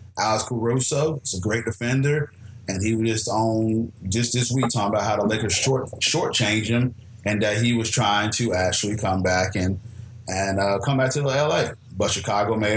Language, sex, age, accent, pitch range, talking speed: English, male, 30-49, American, 105-130 Hz, 195 wpm